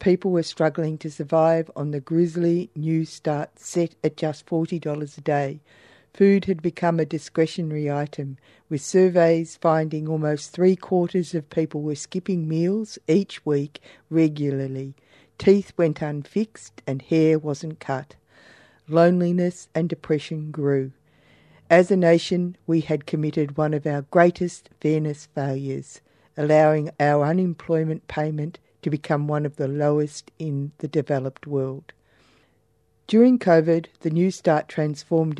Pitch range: 150-170 Hz